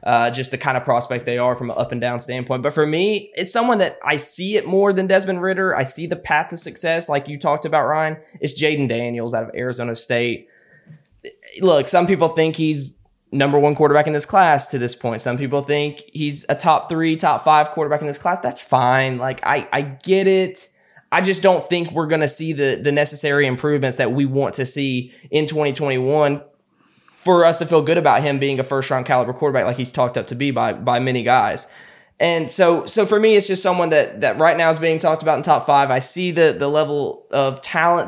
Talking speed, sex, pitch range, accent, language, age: 225 wpm, male, 130-165 Hz, American, English, 10-29